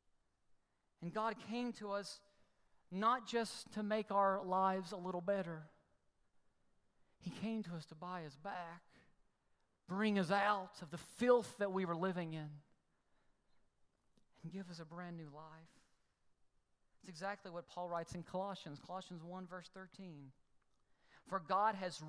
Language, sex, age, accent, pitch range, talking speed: English, male, 40-59, American, 160-210 Hz, 145 wpm